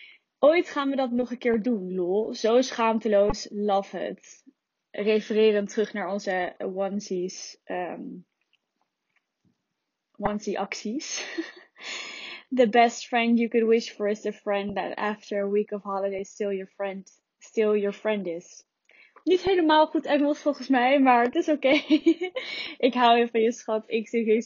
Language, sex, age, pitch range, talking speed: Dutch, female, 10-29, 205-270 Hz, 155 wpm